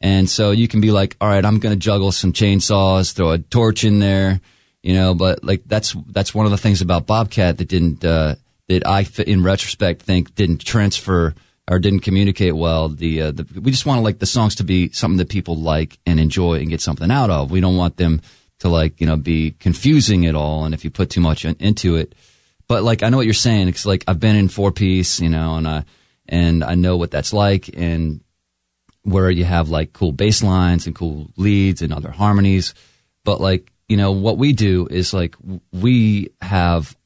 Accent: American